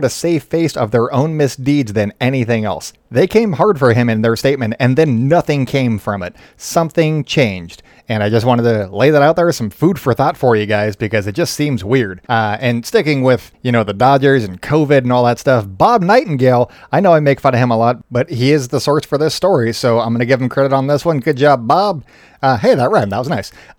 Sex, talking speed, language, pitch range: male, 250 wpm, English, 115-145 Hz